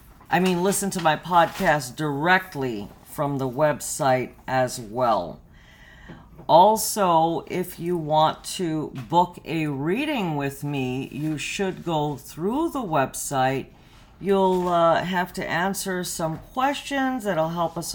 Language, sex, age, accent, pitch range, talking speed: English, female, 50-69, American, 140-185 Hz, 130 wpm